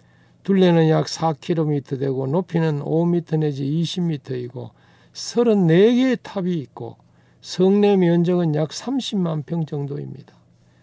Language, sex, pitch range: Korean, male, 135-185 Hz